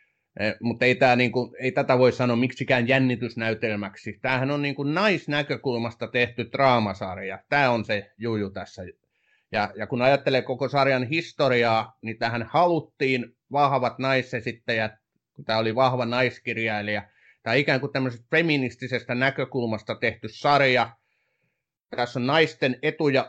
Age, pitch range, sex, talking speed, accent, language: 30-49, 120-155 Hz, male, 125 wpm, native, Finnish